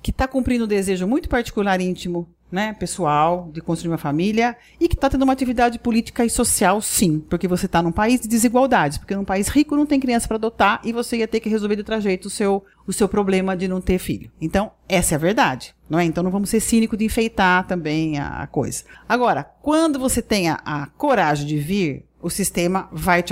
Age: 40-59